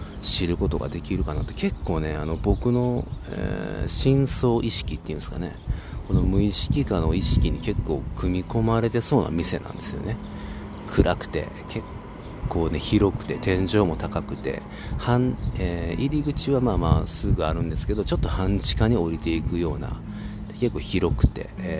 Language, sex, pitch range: Japanese, male, 80-105 Hz